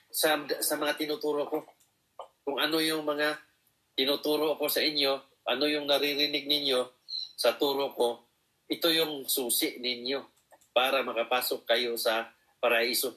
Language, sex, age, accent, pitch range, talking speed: Filipino, male, 40-59, native, 125-155 Hz, 130 wpm